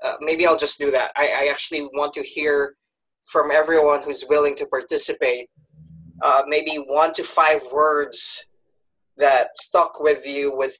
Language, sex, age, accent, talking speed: English, male, 20-39, Filipino, 160 wpm